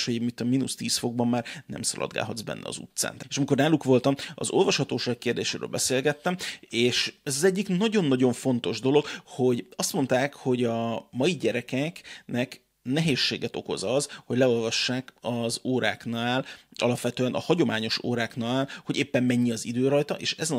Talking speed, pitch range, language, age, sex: 155 wpm, 120-140 Hz, Hungarian, 30-49, male